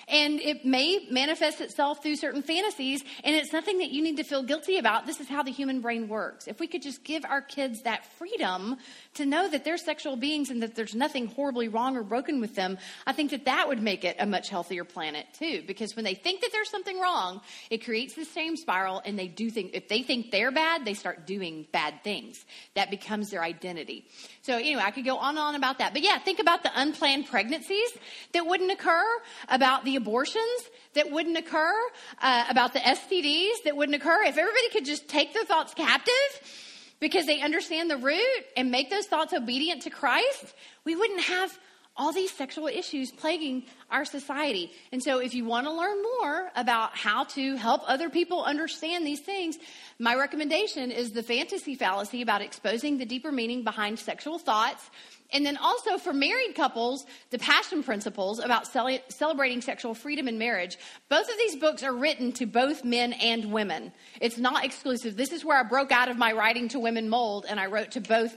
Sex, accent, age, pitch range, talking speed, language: female, American, 40-59, 235-320 Hz, 205 wpm, English